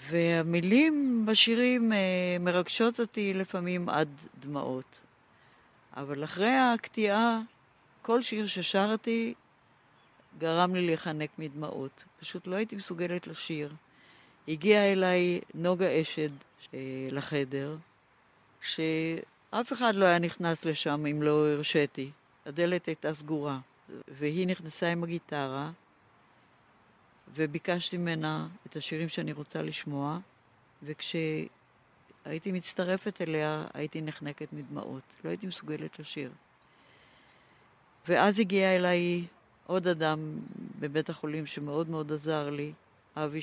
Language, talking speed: Hebrew, 100 wpm